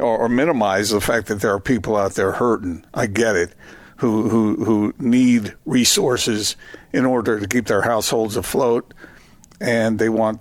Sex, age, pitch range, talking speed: male, 60-79, 110-130 Hz, 165 wpm